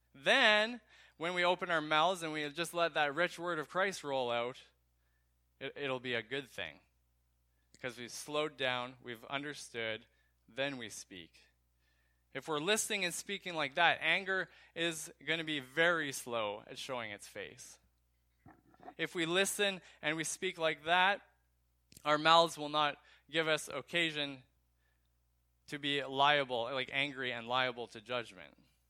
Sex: male